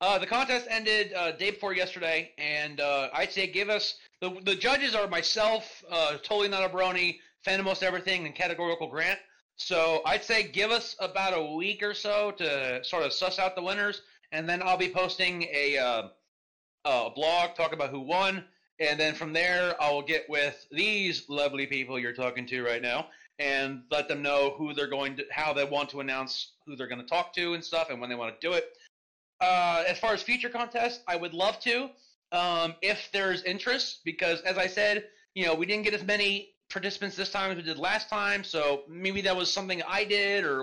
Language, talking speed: English, 220 wpm